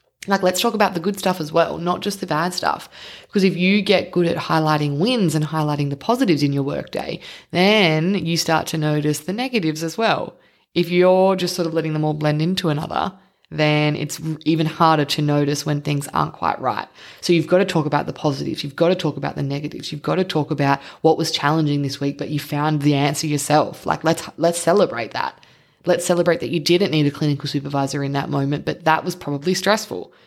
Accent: Australian